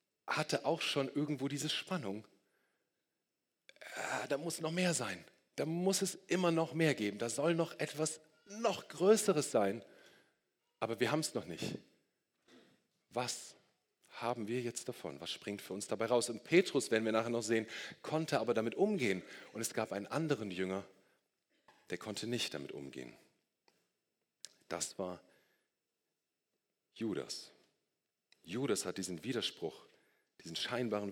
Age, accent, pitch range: 40-59, German, 100-145 Hz